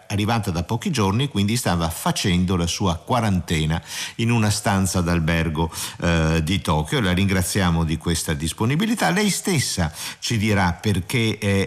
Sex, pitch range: male, 85-120 Hz